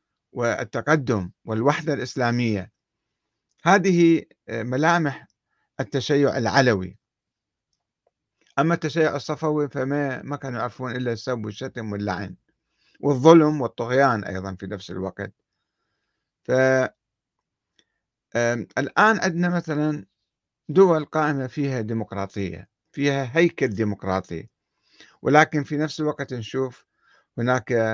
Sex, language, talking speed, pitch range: male, Arabic, 85 wpm, 110-150 Hz